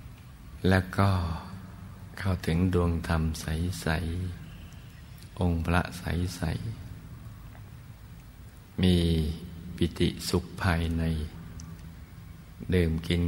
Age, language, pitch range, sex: 60-79, Thai, 85-95 Hz, male